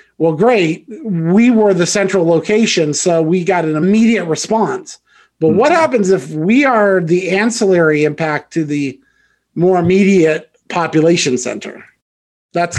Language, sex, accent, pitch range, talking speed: English, male, American, 160-205 Hz, 135 wpm